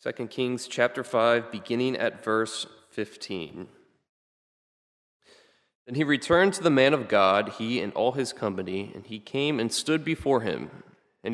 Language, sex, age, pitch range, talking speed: English, male, 20-39, 105-125 Hz, 155 wpm